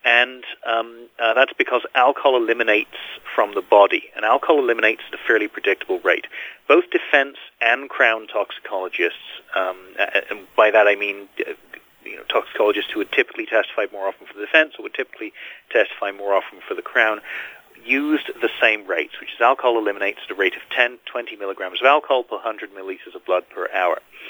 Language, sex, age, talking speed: English, male, 40-59, 185 wpm